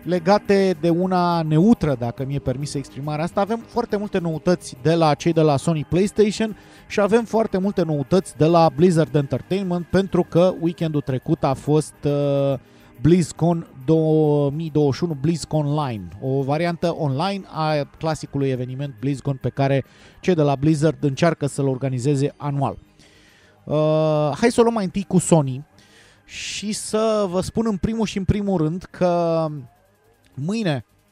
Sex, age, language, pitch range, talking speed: male, 30-49, Romanian, 140-180 Hz, 150 wpm